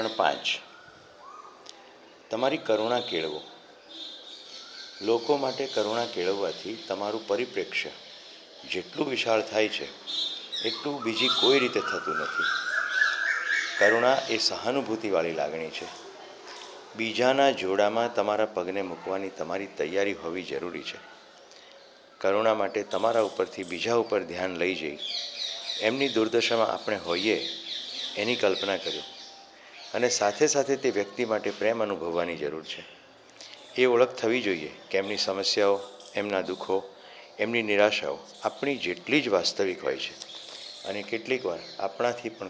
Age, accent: 50-69, native